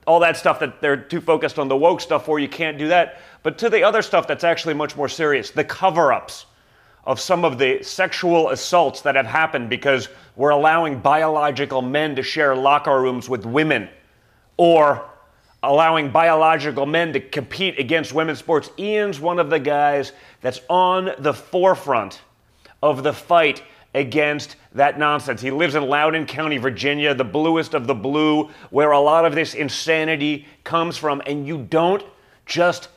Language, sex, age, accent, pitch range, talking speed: English, male, 30-49, American, 145-170 Hz, 175 wpm